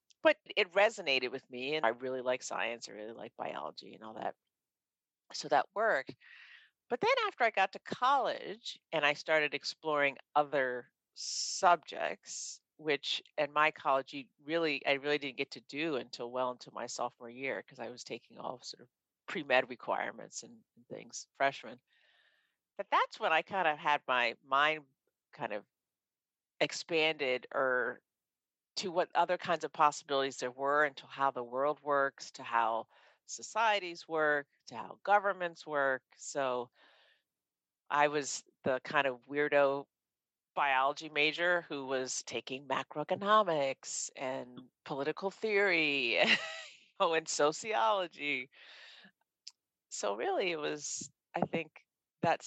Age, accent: 50-69, American